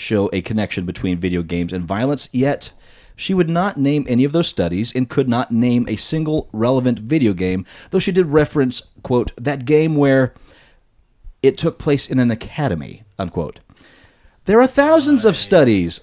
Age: 30-49